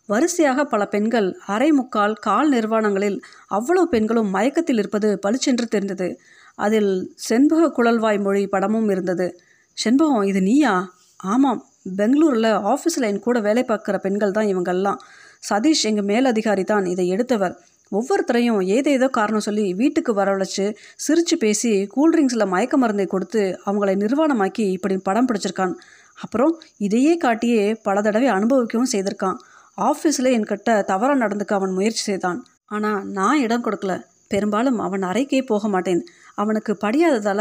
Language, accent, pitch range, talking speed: Tamil, native, 195-250 Hz, 130 wpm